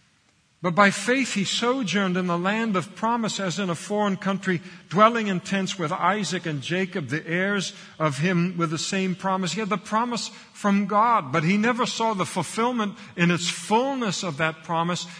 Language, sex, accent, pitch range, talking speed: English, male, American, 120-180 Hz, 190 wpm